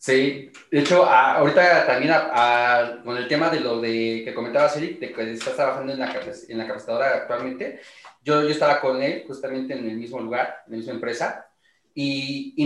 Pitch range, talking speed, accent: 125-160 Hz, 200 wpm, Mexican